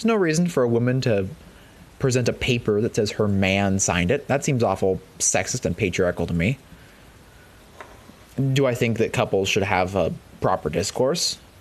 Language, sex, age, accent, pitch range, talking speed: English, male, 20-39, American, 100-145 Hz, 170 wpm